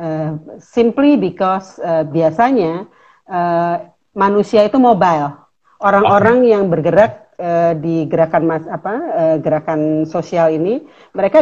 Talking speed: 115 wpm